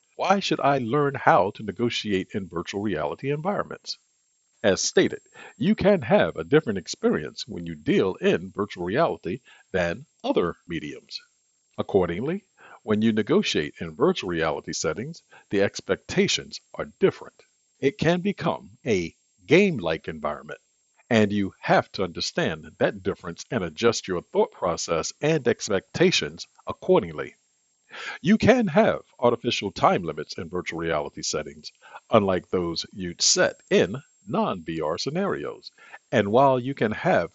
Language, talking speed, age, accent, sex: English, 135 wpm, 50-69, American, male